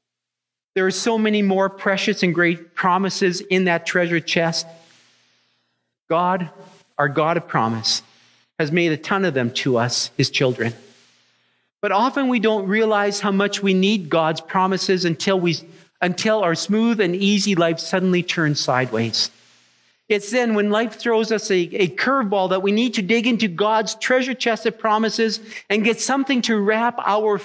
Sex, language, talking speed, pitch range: male, English, 165 wpm, 155-210 Hz